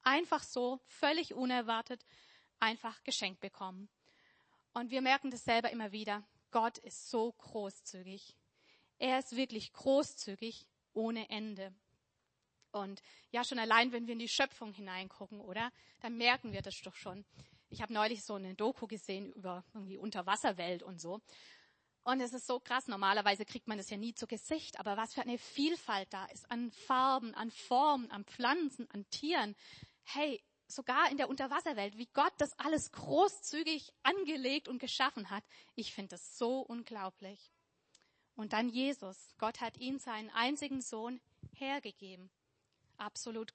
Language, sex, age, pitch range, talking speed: German, female, 30-49, 205-260 Hz, 155 wpm